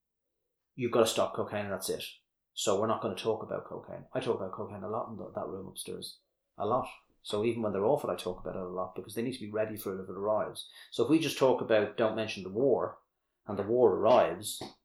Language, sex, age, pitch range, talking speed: English, male, 30-49, 105-120 Hz, 260 wpm